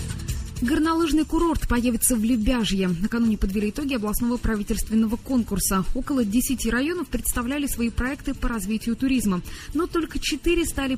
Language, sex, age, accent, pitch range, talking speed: Russian, female, 20-39, native, 200-270 Hz, 130 wpm